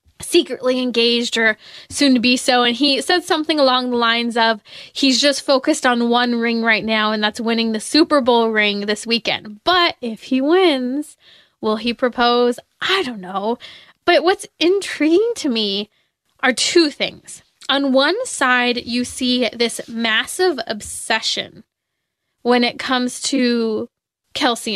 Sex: female